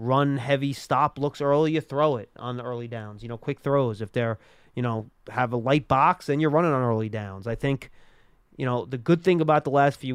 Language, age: English, 30-49